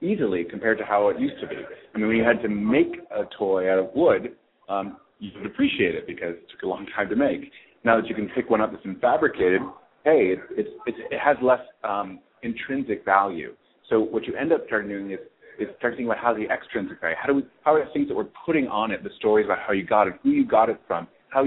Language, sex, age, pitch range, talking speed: English, male, 30-49, 100-140 Hz, 265 wpm